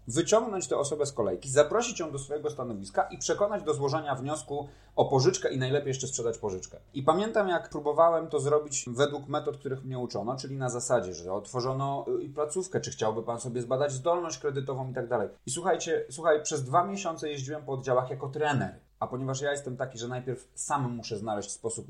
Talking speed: 190 wpm